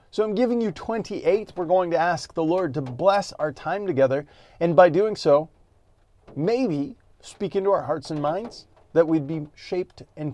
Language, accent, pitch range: English, American, 125-180 Hz